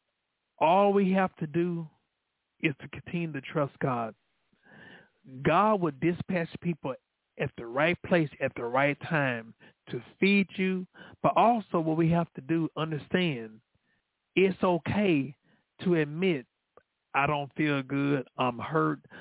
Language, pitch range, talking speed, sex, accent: English, 150-195 Hz, 135 wpm, male, American